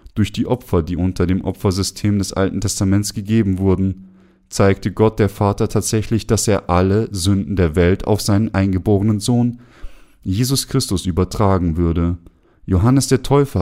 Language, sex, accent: German, male, German